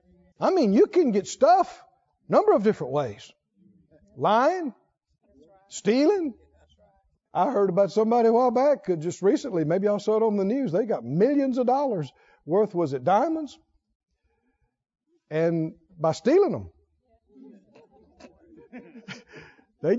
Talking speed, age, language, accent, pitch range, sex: 130 wpm, 60-79, English, American, 180-290 Hz, male